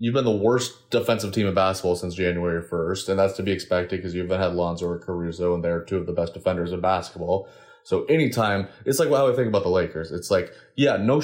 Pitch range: 95-115 Hz